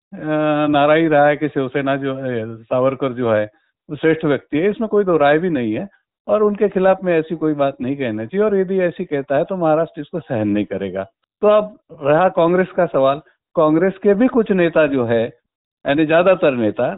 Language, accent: Hindi, native